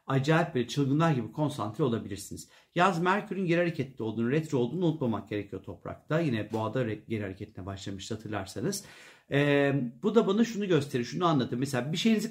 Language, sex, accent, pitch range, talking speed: Turkish, male, native, 125-165 Hz, 160 wpm